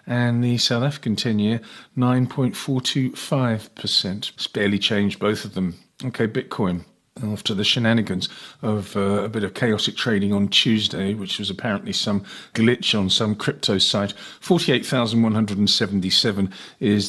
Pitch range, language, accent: 105-135 Hz, English, British